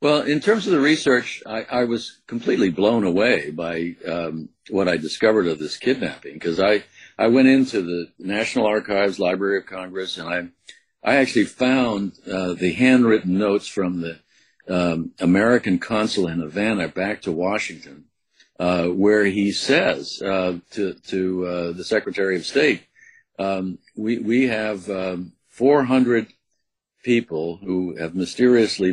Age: 60-79